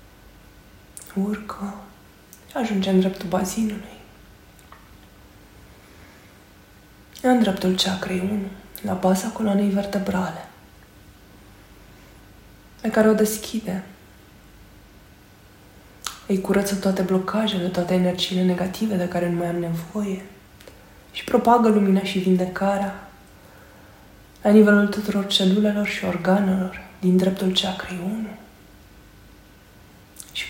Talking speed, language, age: 90 wpm, Romanian, 20-39